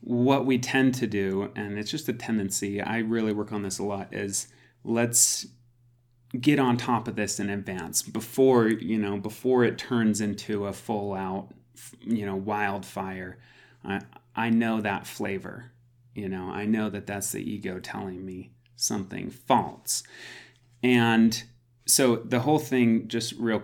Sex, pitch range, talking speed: male, 105-125 Hz, 160 wpm